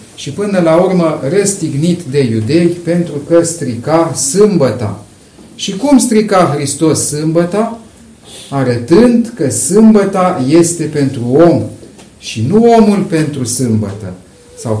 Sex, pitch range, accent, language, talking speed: male, 115-165 Hz, native, Romanian, 115 wpm